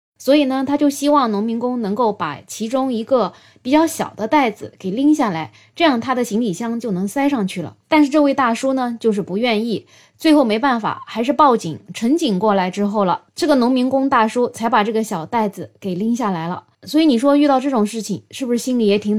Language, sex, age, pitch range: Chinese, female, 20-39, 205-270 Hz